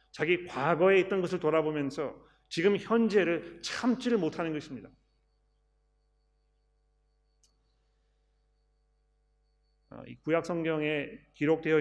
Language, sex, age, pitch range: Korean, male, 40-59, 150-190 Hz